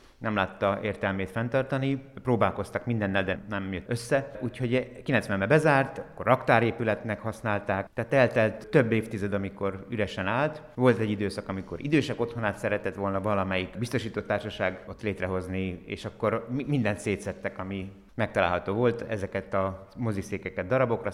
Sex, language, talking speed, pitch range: male, Hungarian, 135 wpm, 95-110 Hz